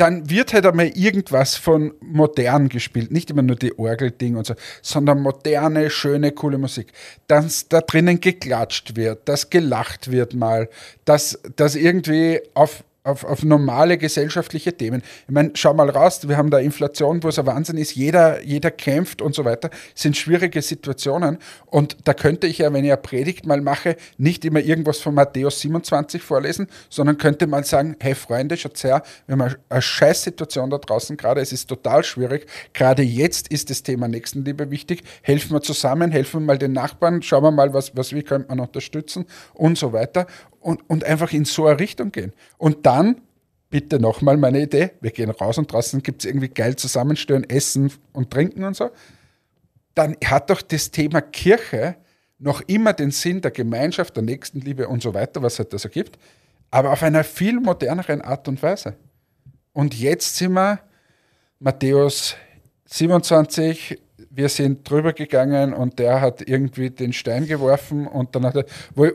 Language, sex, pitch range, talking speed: German, male, 130-160 Hz, 180 wpm